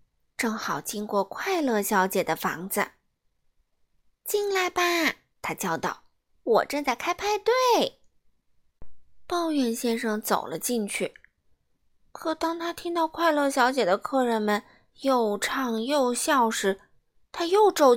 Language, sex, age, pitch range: Chinese, female, 20-39, 190-275 Hz